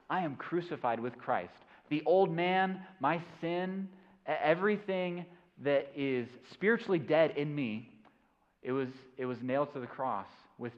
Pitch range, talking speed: 125-160 Hz, 145 wpm